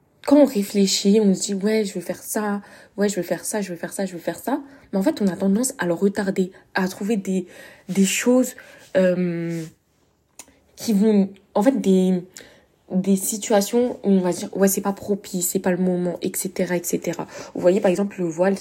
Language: French